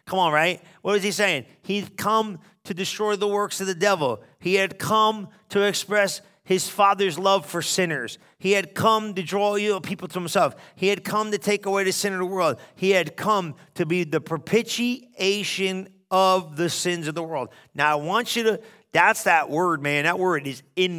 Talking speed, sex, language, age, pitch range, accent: 205 wpm, male, English, 40-59, 145-190 Hz, American